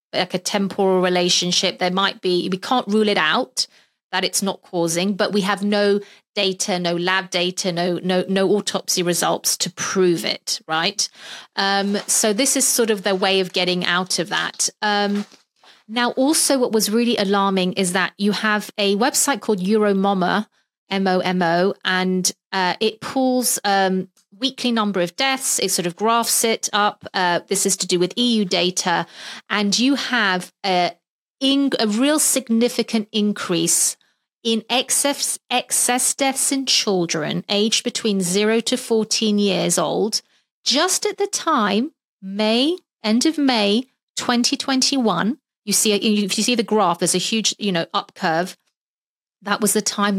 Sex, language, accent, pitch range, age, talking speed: female, English, British, 185-235 Hz, 30-49, 165 wpm